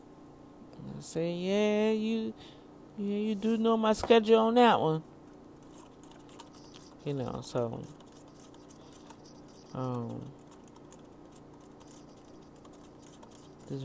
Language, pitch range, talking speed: English, 125-165 Hz, 80 wpm